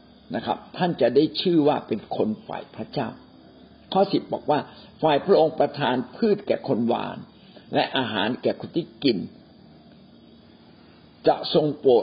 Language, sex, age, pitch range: Thai, male, 60-79, 140-210 Hz